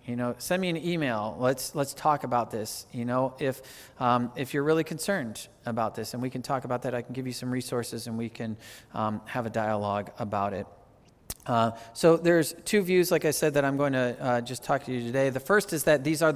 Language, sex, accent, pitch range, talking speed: English, male, American, 125-155 Hz, 240 wpm